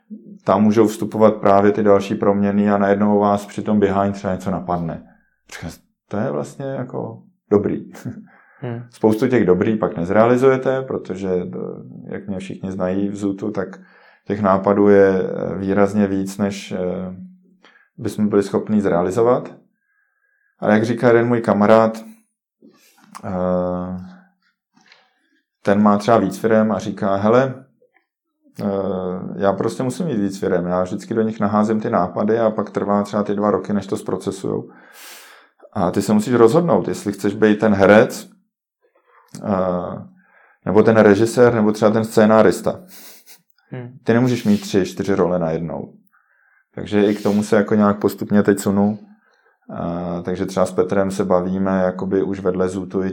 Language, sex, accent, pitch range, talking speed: Czech, male, native, 95-115 Hz, 140 wpm